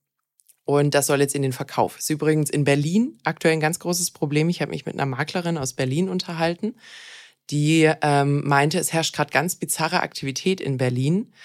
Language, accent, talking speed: German, German, 195 wpm